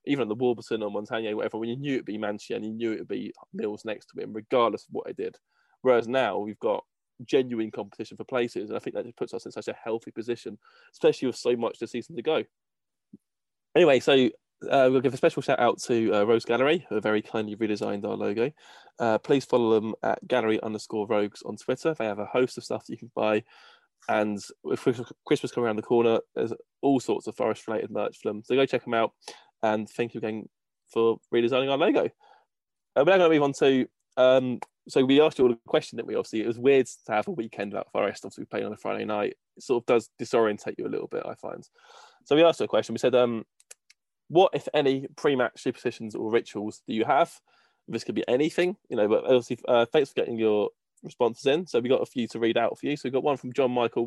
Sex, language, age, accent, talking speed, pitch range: male, English, 20-39, British, 245 wpm, 110-145 Hz